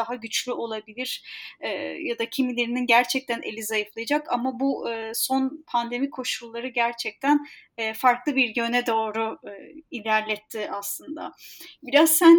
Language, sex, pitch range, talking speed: Turkish, female, 240-290 Hz, 130 wpm